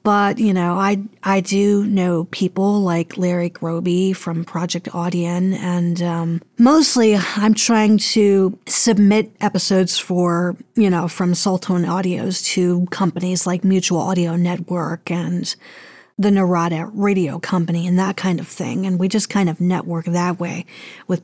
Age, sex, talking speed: 40-59, female, 150 wpm